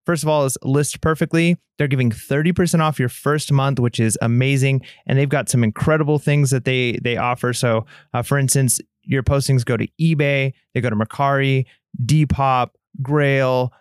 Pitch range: 125-155 Hz